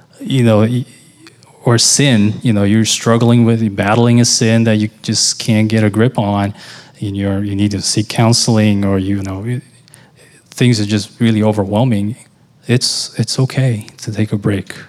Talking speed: 175 wpm